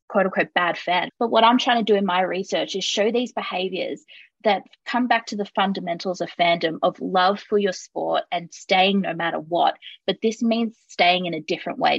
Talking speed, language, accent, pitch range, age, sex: 210 wpm, English, Australian, 170-205 Hz, 20-39, female